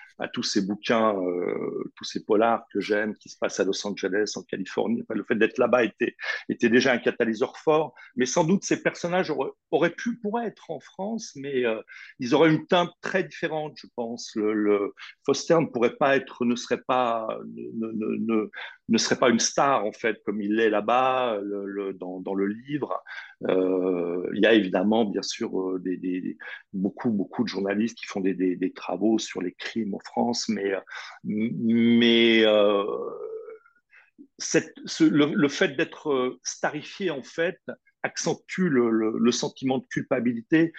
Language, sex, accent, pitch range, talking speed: French, male, French, 105-165 Hz, 175 wpm